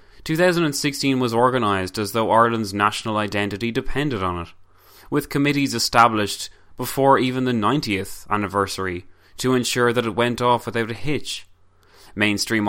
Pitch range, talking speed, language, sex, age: 100-120 Hz, 135 wpm, English, male, 20-39